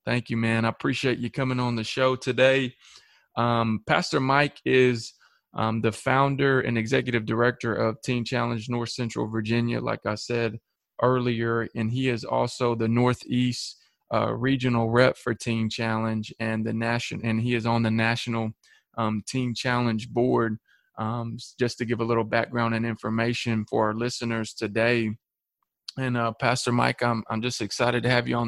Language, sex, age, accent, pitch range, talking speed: English, male, 20-39, American, 115-125 Hz, 170 wpm